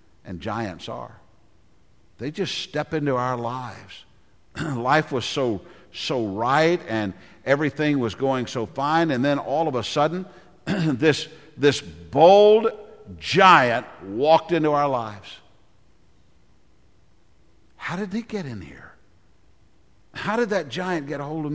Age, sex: 60-79, male